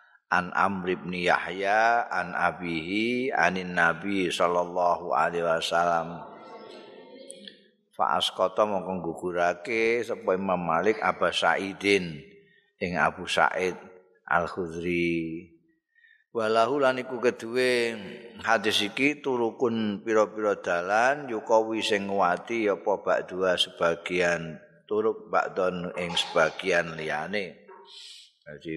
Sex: male